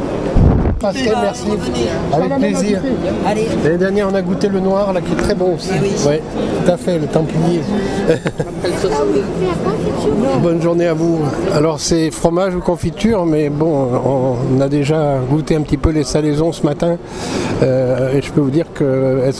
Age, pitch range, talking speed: 60-79, 135-165 Hz, 160 wpm